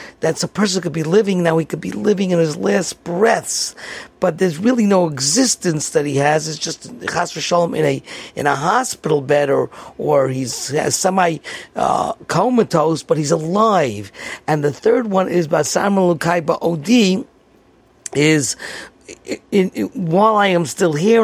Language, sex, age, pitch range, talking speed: English, male, 50-69, 155-210 Hz, 165 wpm